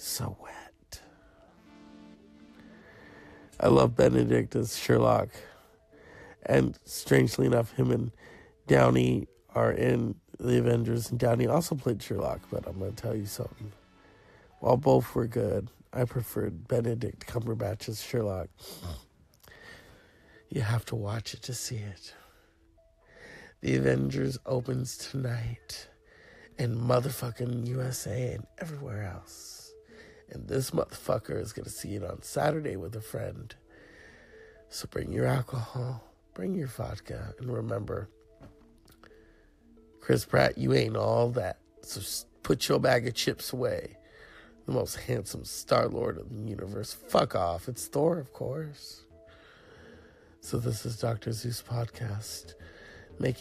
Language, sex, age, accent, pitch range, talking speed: English, male, 50-69, American, 95-125 Hz, 125 wpm